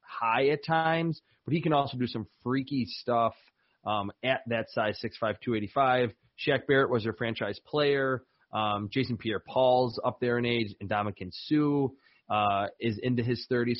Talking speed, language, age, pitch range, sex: 170 wpm, English, 30-49, 115-145 Hz, male